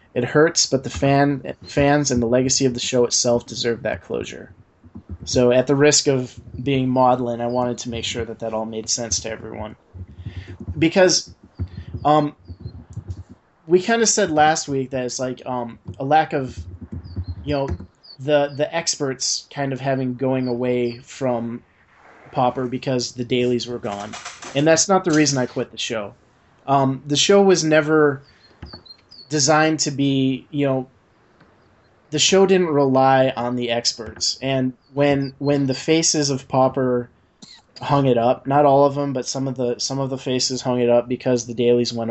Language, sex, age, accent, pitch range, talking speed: English, male, 30-49, American, 115-140 Hz, 175 wpm